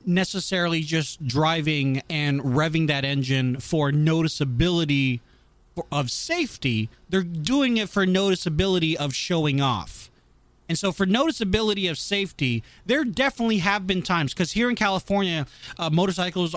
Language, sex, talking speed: English, male, 130 wpm